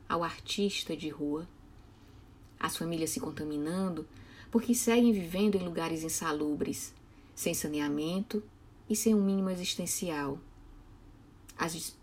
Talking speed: 110 wpm